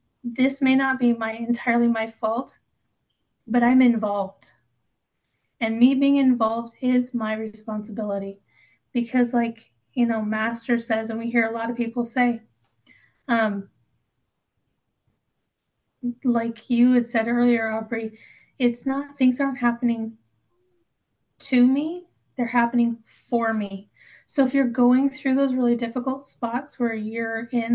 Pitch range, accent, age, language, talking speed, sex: 225-250 Hz, American, 30-49, English, 135 wpm, female